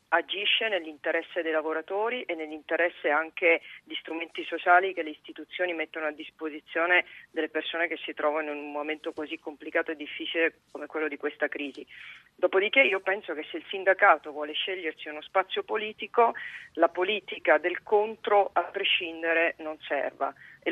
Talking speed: 155 wpm